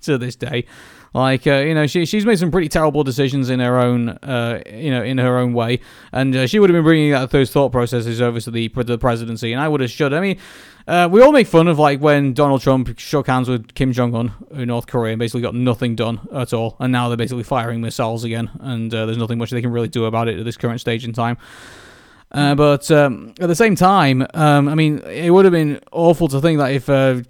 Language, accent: English, British